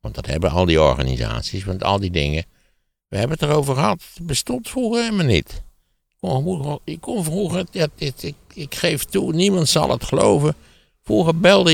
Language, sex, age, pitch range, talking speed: Dutch, male, 60-79, 75-115 Hz, 170 wpm